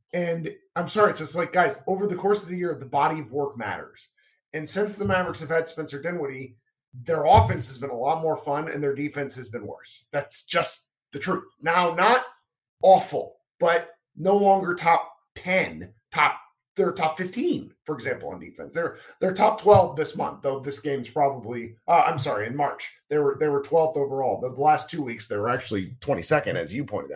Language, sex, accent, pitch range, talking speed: English, male, American, 135-185 Hz, 210 wpm